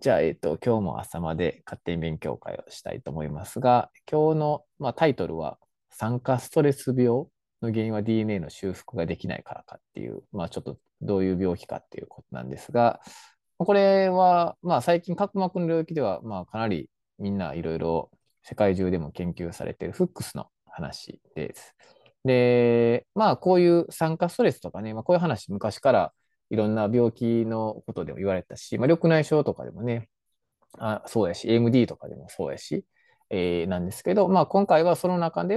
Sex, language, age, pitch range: male, Japanese, 20-39, 105-170 Hz